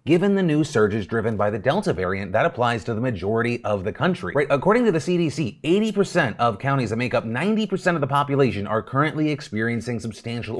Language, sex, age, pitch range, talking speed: English, male, 30-49, 120-170 Hz, 200 wpm